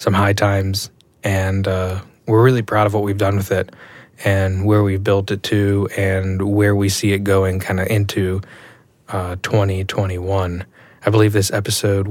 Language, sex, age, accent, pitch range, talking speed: English, male, 20-39, American, 95-110 Hz, 175 wpm